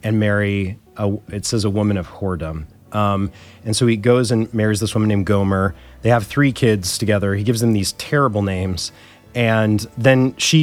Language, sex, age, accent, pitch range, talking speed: English, male, 30-49, American, 100-120 Hz, 190 wpm